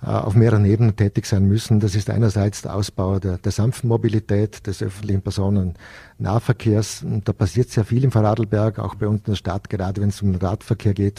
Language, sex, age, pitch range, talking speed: German, male, 50-69, 100-115 Hz, 195 wpm